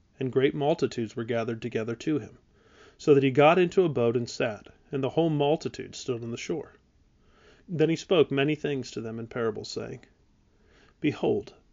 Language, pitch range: English, 125-150 Hz